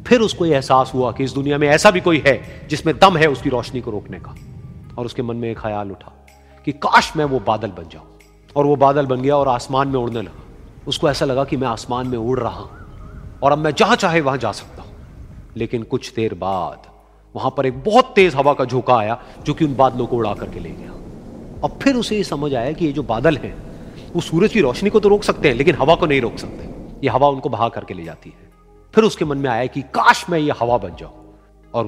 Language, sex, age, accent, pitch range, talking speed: Hindi, male, 40-59, native, 115-160 Hz, 245 wpm